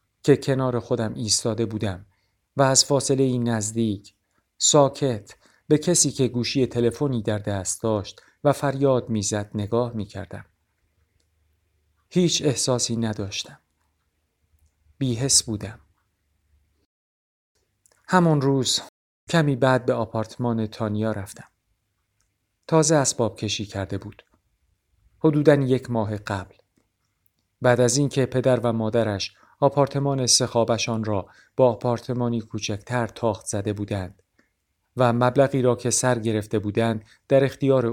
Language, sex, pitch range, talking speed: Persian, male, 100-130 Hz, 110 wpm